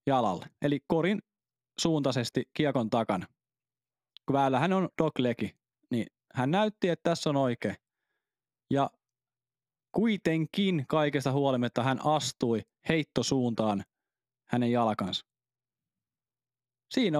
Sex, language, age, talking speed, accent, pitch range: male, Finnish, 20-39, 95 wpm, native, 125-170 Hz